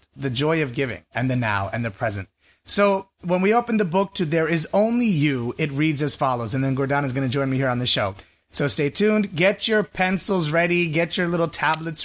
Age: 30-49